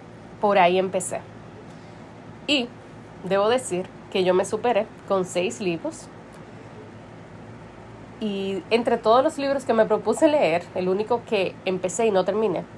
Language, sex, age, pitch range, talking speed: Spanish, female, 30-49, 170-195 Hz, 135 wpm